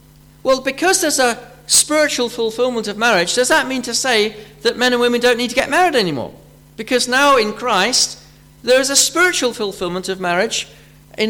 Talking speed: 185 wpm